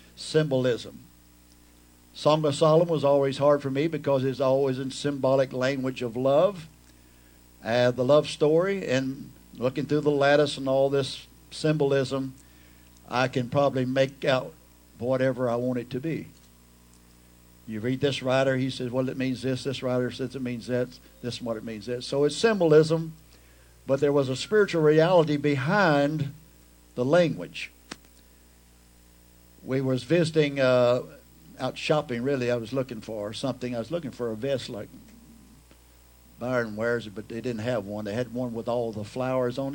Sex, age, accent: male, 60-79, American